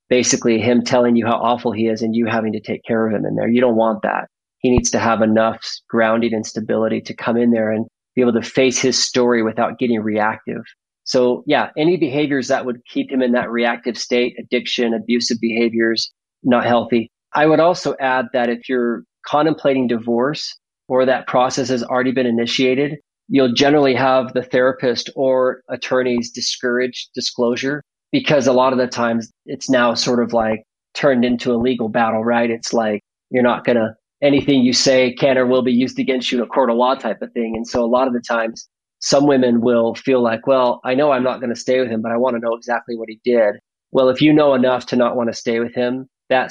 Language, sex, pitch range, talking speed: English, male, 115-130 Hz, 215 wpm